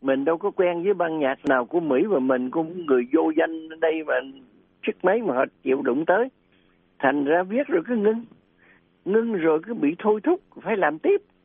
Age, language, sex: 60-79, Vietnamese, male